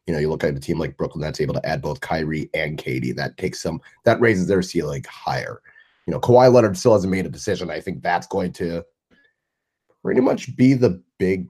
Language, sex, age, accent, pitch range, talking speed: English, male, 30-49, American, 80-100 Hz, 230 wpm